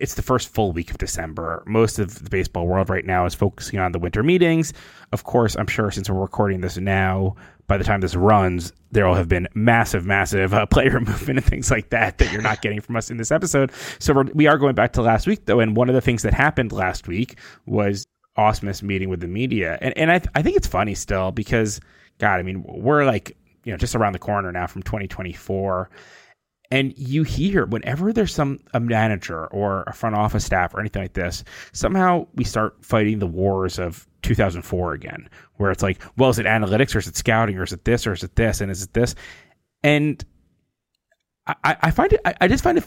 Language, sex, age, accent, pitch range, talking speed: English, male, 20-39, American, 95-125 Hz, 225 wpm